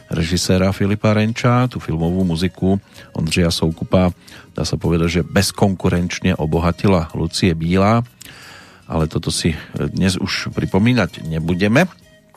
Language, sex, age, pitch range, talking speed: Slovak, male, 40-59, 85-100 Hz, 110 wpm